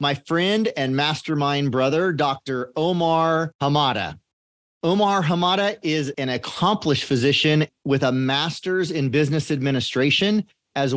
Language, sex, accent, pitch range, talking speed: English, male, American, 130-160 Hz, 115 wpm